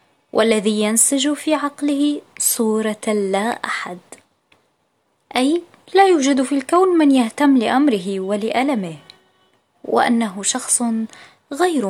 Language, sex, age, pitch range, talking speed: Arabic, female, 20-39, 215-280 Hz, 95 wpm